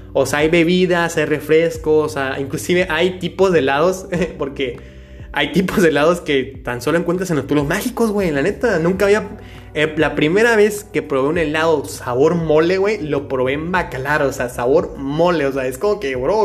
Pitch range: 130-165 Hz